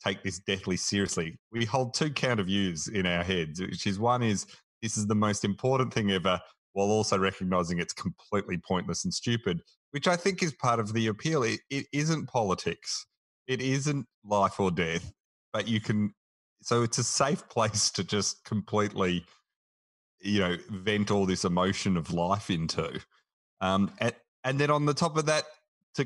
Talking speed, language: 180 wpm, English